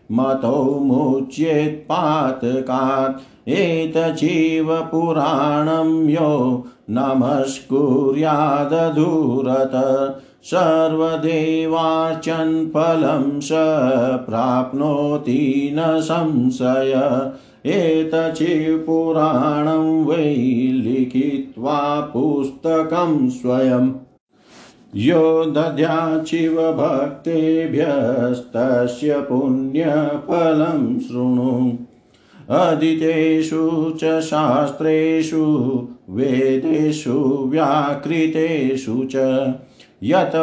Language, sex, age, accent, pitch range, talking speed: Hindi, male, 50-69, native, 130-160 Hz, 40 wpm